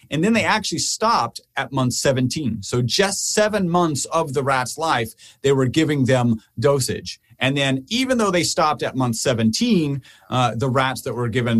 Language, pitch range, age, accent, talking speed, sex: English, 115-155 Hz, 40-59, American, 185 wpm, male